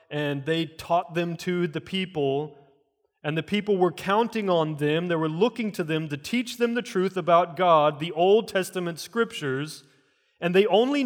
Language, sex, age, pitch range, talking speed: English, male, 30-49, 155-215 Hz, 180 wpm